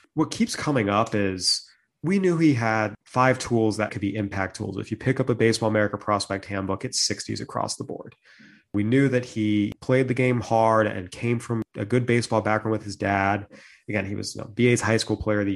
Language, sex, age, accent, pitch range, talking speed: English, male, 30-49, American, 100-120 Hz, 220 wpm